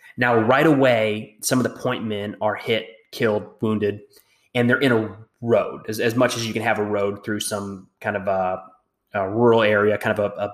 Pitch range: 105-135 Hz